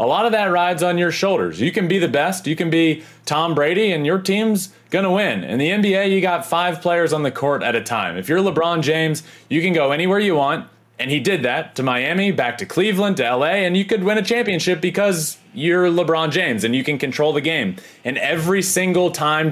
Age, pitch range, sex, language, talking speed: 30-49, 145-195 Hz, male, English, 240 wpm